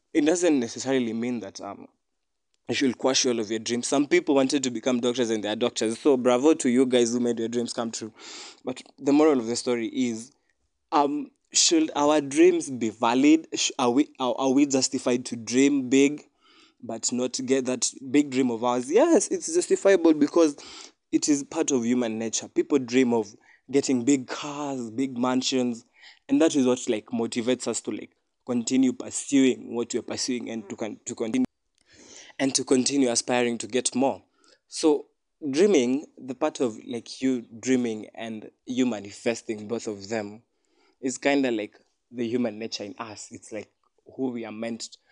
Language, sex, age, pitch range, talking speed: English, male, 20-39, 120-145 Hz, 180 wpm